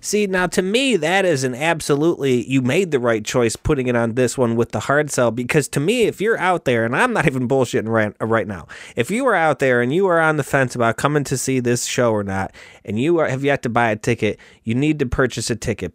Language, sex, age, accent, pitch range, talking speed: English, male, 30-49, American, 120-180 Hz, 265 wpm